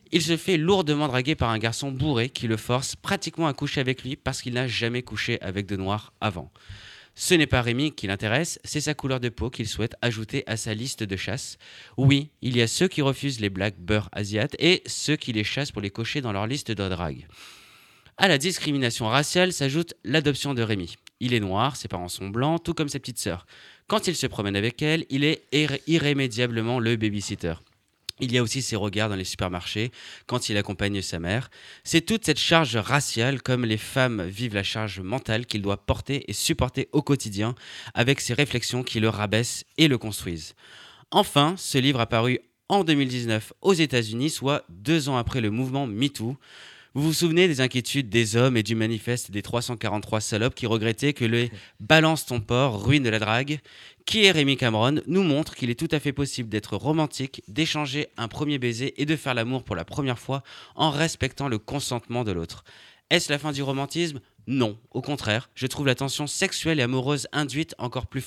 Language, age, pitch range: French, 30-49, 110-145 Hz